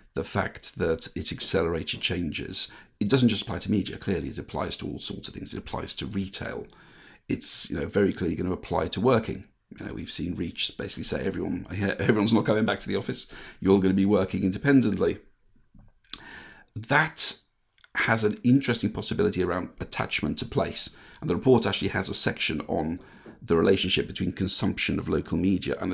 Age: 50-69